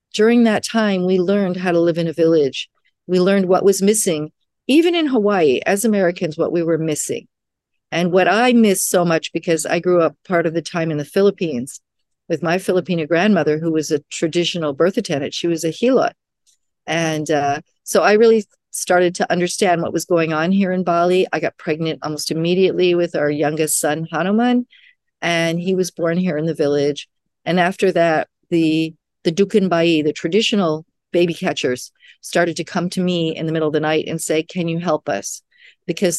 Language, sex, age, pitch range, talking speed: English, female, 50-69, 160-190 Hz, 195 wpm